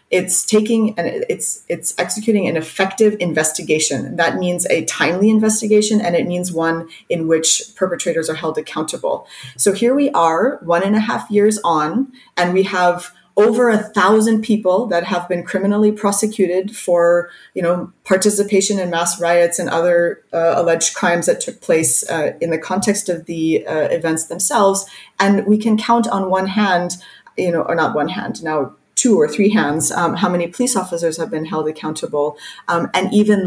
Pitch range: 160-200 Hz